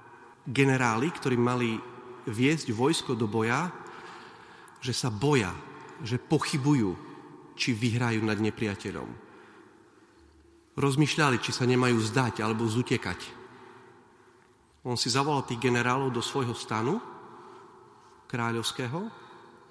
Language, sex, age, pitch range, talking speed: Slovak, male, 40-59, 105-135 Hz, 95 wpm